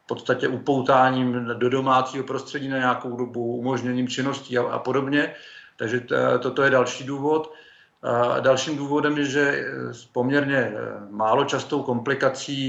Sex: male